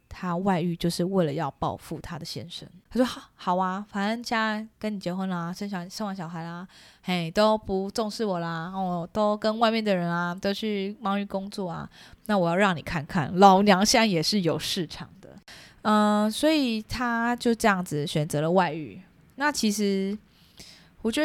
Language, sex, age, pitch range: Chinese, female, 20-39, 170-210 Hz